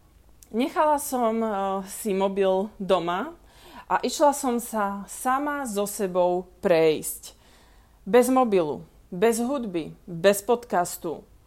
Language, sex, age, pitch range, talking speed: Slovak, female, 20-39, 190-245 Hz, 100 wpm